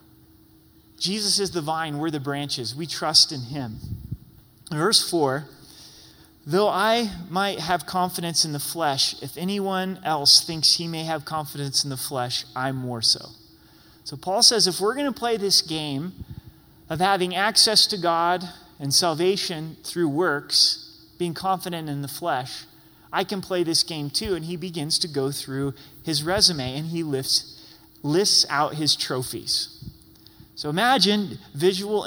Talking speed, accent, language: 150 wpm, American, English